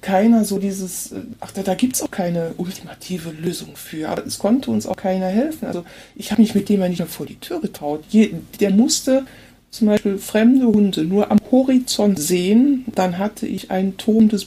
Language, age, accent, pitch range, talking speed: German, 60-79, German, 185-230 Hz, 200 wpm